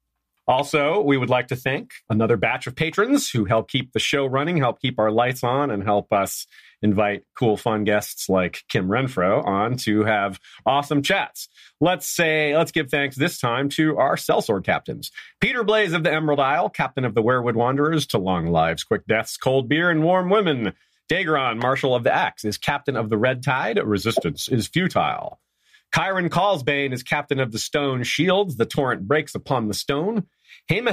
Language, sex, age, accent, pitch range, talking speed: English, male, 40-59, American, 110-155 Hz, 190 wpm